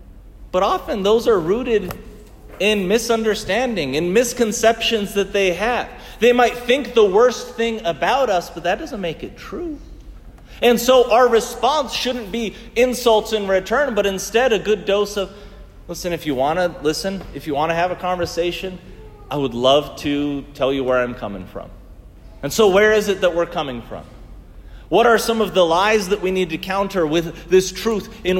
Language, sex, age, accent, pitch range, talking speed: English, male, 40-59, American, 165-225 Hz, 185 wpm